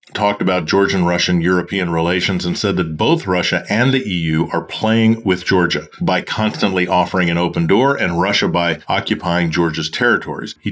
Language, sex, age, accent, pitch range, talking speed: English, male, 40-59, American, 85-100 Hz, 170 wpm